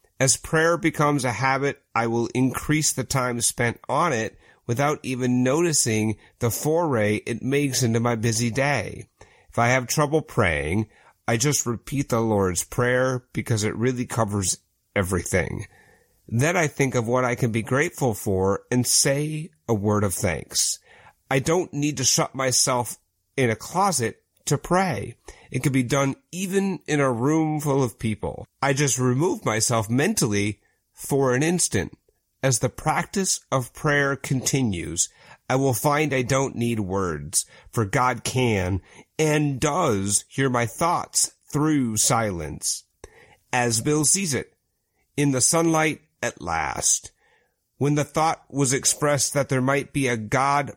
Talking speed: 150 wpm